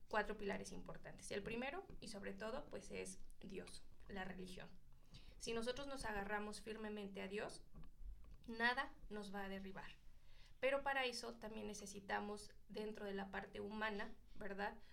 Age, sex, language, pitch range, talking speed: 20-39, female, Spanish, 195-215 Hz, 145 wpm